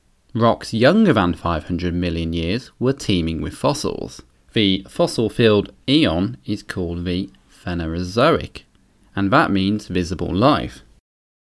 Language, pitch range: English, 85-120 Hz